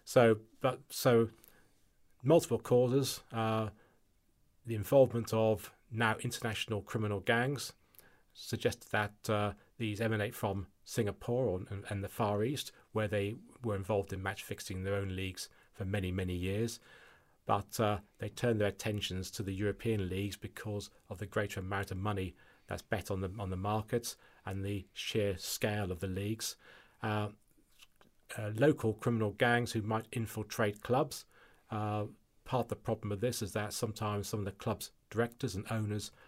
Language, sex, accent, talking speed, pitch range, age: English, male, British, 160 wpm, 100-120 Hz, 40-59